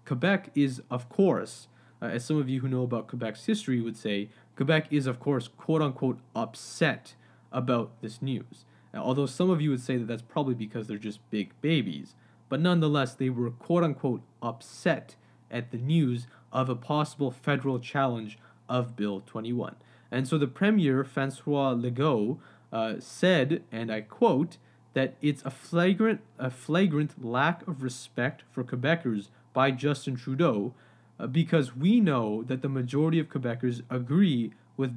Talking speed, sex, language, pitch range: 155 wpm, male, English, 120-155 Hz